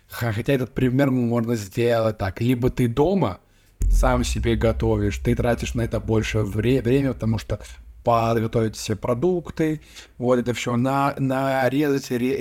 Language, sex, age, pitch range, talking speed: Russian, male, 20-39, 110-130 Hz, 140 wpm